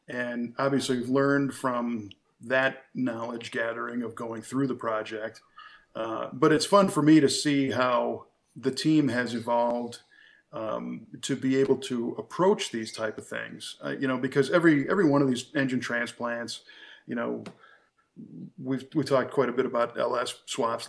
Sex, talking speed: male, 165 wpm